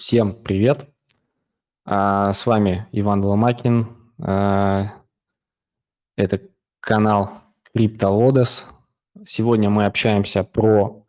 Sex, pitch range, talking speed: male, 95-115 Hz, 70 wpm